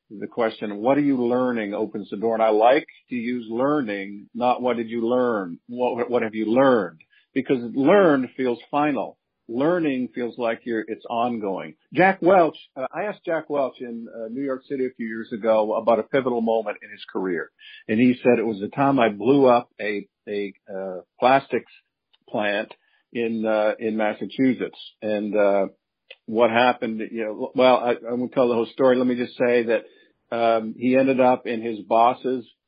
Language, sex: English, male